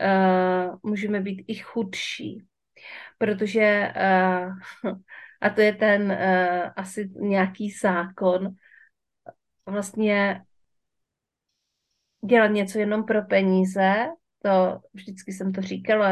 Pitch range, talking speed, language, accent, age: 185-210 Hz, 85 wpm, Czech, native, 40-59